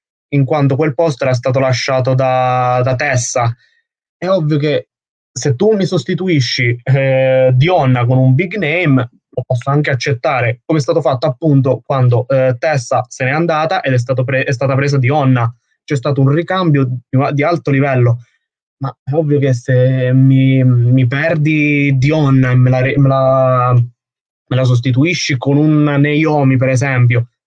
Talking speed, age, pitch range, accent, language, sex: 165 wpm, 20-39, 130-150 Hz, native, Italian, male